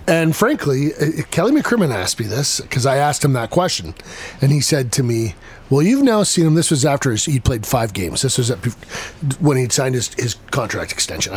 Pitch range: 120-170 Hz